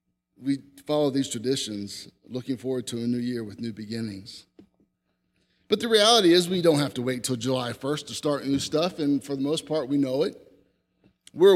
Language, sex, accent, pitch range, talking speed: English, male, American, 125-165 Hz, 195 wpm